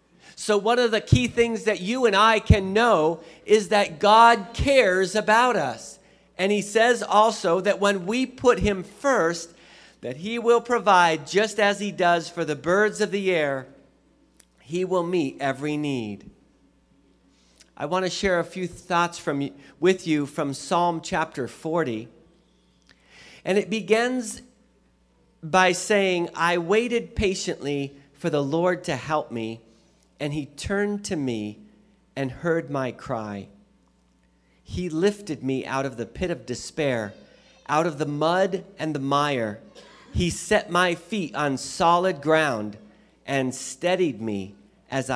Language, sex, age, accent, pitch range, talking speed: English, male, 40-59, American, 140-205 Hz, 150 wpm